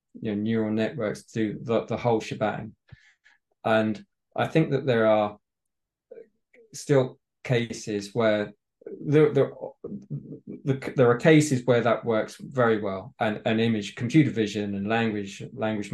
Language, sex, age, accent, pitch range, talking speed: English, male, 20-39, British, 105-120 Hz, 140 wpm